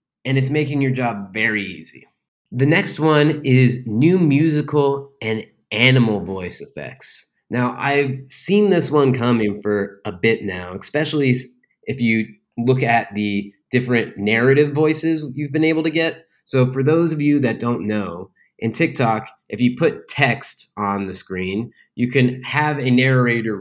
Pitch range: 110-135 Hz